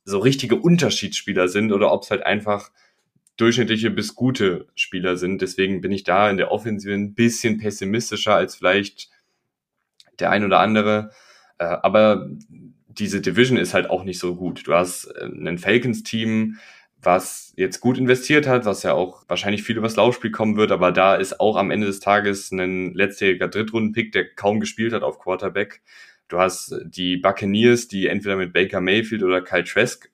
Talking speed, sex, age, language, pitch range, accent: 170 wpm, male, 10-29, German, 95-110 Hz, German